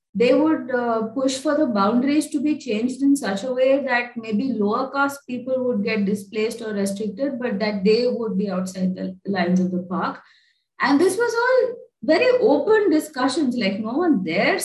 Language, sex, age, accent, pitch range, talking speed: English, female, 20-39, Indian, 190-275 Hz, 190 wpm